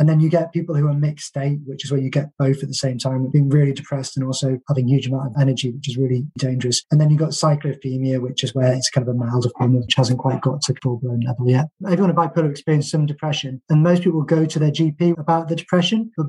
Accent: British